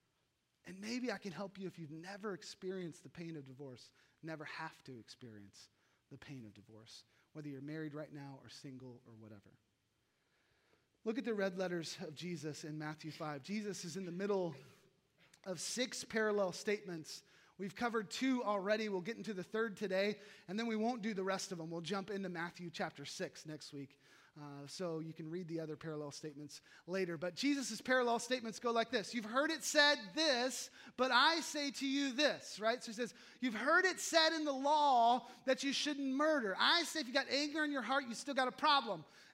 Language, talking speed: English, 205 wpm